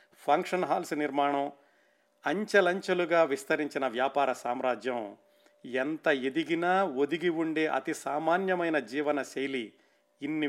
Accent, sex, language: native, male, Telugu